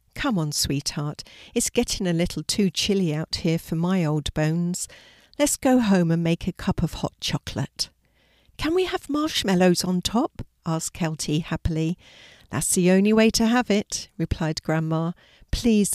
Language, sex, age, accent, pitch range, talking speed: English, female, 50-69, British, 110-190 Hz, 165 wpm